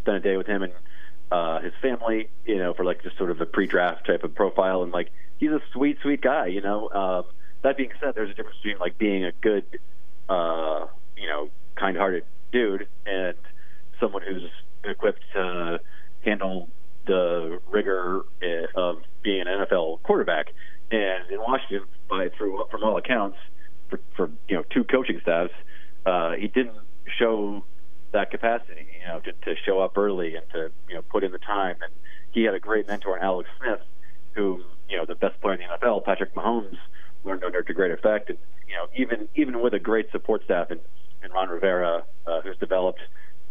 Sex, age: male, 30-49